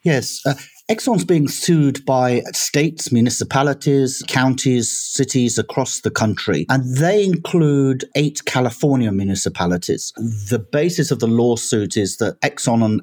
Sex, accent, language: male, British, English